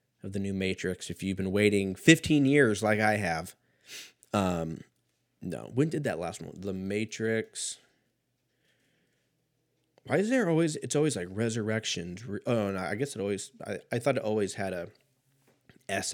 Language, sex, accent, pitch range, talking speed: English, male, American, 95-130 Hz, 165 wpm